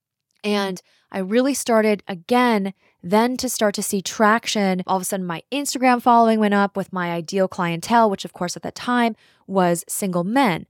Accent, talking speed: American, 185 wpm